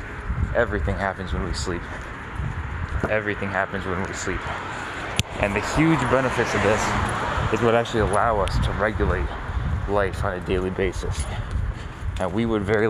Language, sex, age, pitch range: English, male, 20-39, 90-105 Hz